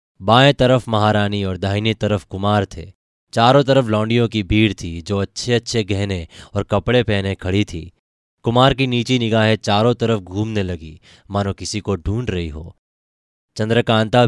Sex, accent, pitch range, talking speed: male, native, 95-115 Hz, 160 wpm